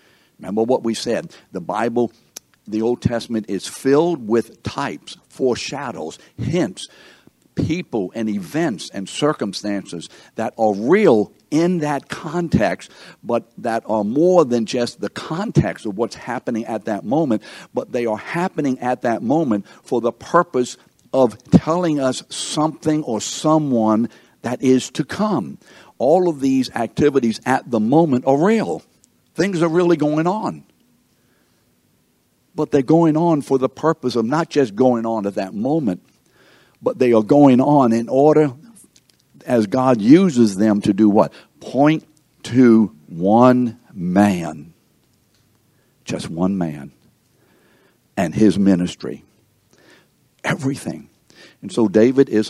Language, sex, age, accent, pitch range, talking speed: English, male, 60-79, American, 110-155 Hz, 135 wpm